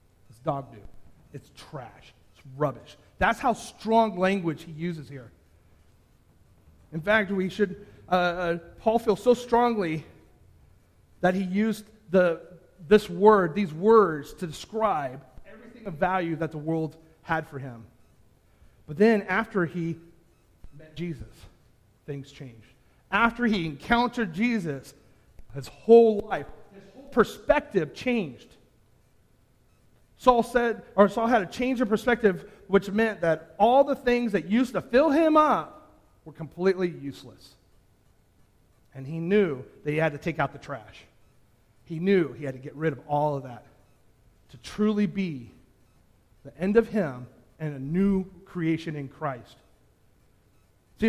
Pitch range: 125-210 Hz